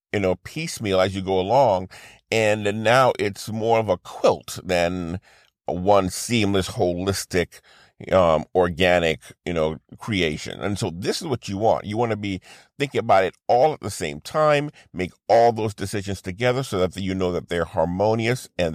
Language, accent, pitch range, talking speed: English, American, 90-115 Hz, 175 wpm